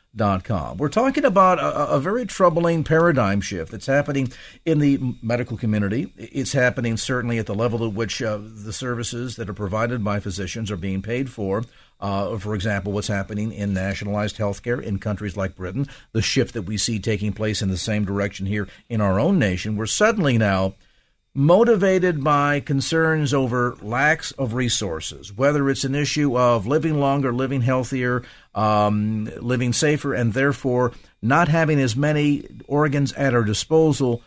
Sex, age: male, 50-69